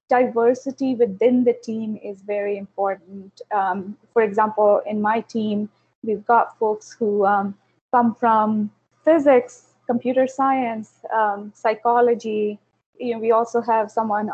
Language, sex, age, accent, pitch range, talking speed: English, female, 20-39, Indian, 210-250 Hz, 130 wpm